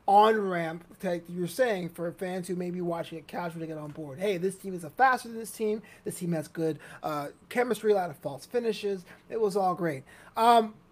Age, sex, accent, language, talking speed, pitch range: 30-49, male, American, English, 225 wpm, 170-235 Hz